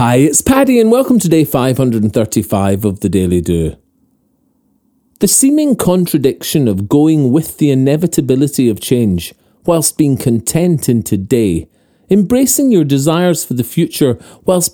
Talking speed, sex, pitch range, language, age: 140 wpm, male, 115-170 Hz, English, 40-59